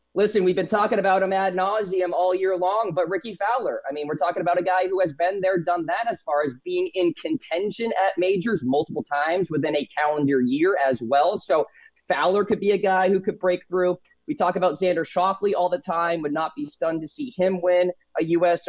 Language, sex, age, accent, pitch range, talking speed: English, male, 20-39, American, 160-205 Hz, 230 wpm